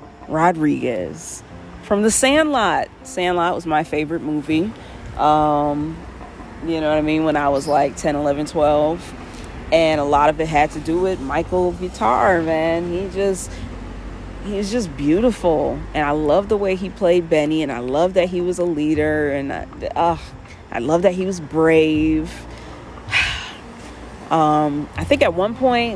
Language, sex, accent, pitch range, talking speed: English, female, American, 150-180 Hz, 165 wpm